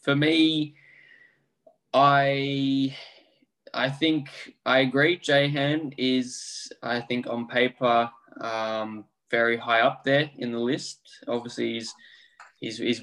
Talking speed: 115 wpm